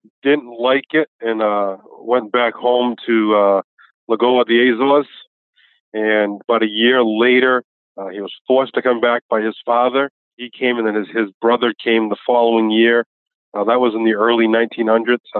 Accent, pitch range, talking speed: American, 110-125 Hz, 185 wpm